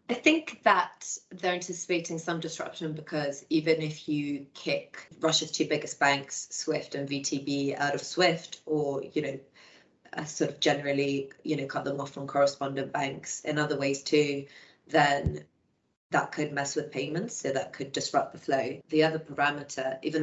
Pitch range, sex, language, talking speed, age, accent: 140-155 Hz, female, English, 170 wpm, 30-49, British